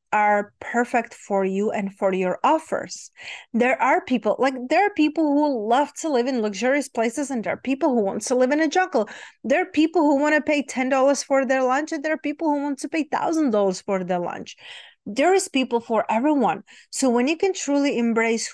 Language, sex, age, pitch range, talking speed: English, female, 30-49, 205-275 Hz, 215 wpm